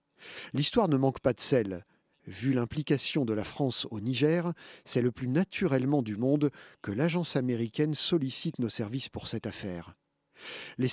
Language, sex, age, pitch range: French, male, 40-59, 110-155 Hz